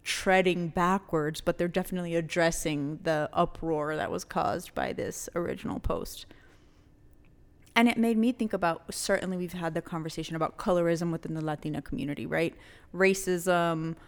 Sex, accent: female, American